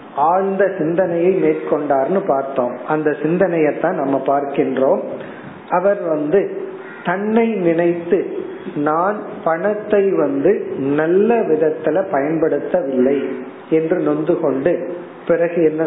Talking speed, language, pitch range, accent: 40 wpm, Tamil, 150-195 Hz, native